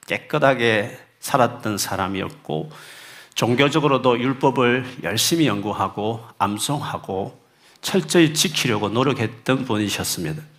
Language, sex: Korean, male